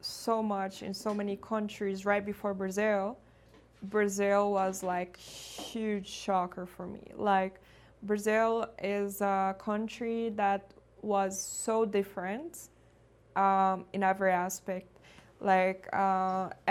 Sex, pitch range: female, 195-220 Hz